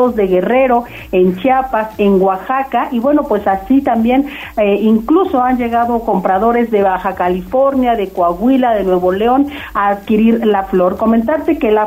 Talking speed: 155 wpm